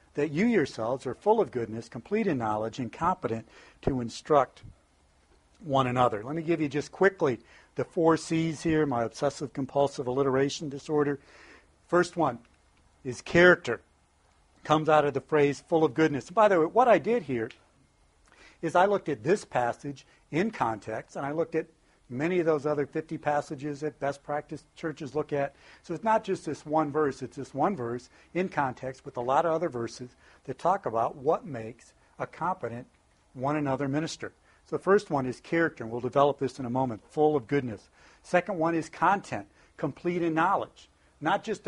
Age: 60-79